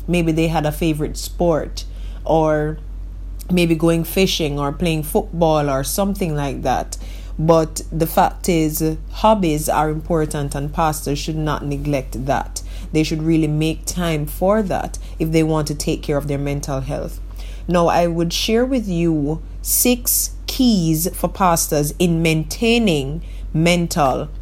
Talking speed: 145 wpm